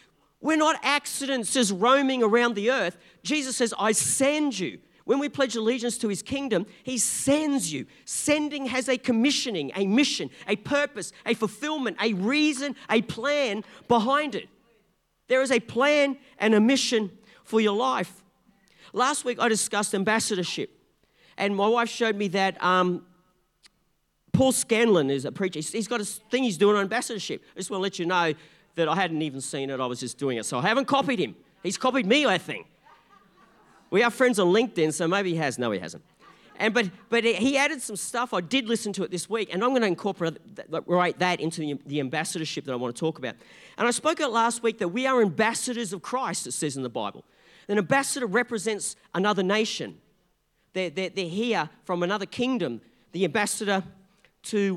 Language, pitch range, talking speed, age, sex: English, 180-255 Hz, 195 wpm, 40-59, male